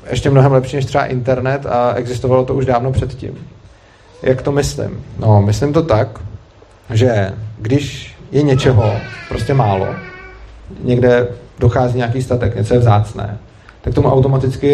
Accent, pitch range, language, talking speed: native, 110-140 Hz, Czech, 145 wpm